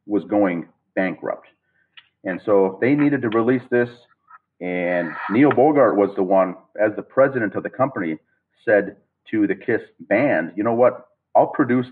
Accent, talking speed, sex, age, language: American, 160 wpm, male, 40-59, English